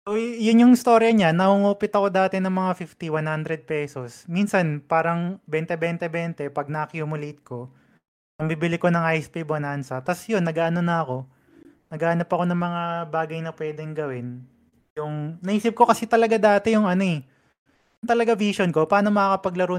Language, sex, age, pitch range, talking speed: Filipino, male, 20-39, 150-195 Hz, 160 wpm